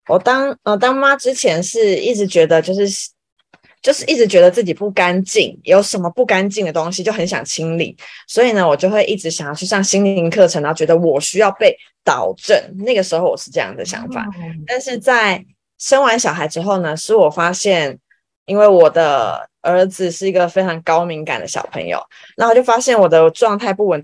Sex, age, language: female, 20-39, Chinese